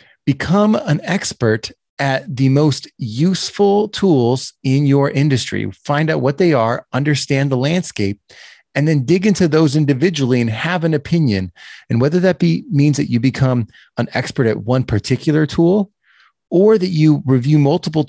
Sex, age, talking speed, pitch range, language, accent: male, 30-49, 160 wpm, 120-160 Hz, English, American